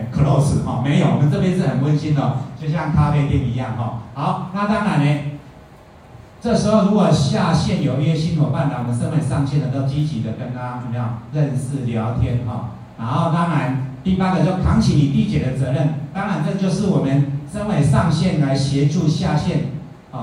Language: Chinese